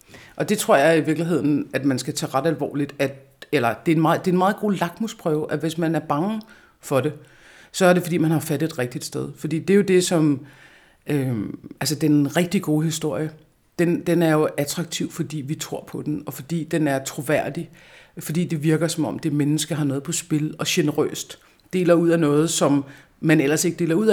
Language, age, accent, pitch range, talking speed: Danish, 50-69, native, 145-170 Hz, 225 wpm